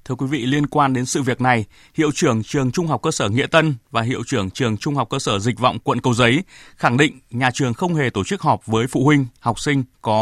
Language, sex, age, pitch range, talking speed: Vietnamese, male, 20-39, 120-150 Hz, 270 wpm